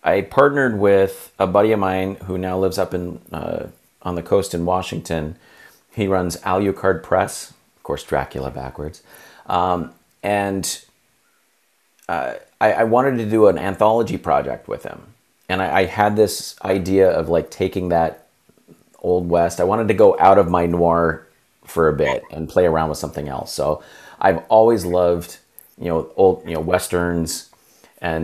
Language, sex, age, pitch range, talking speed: English, male, 30-49, 80-95 Hz, 170 wpm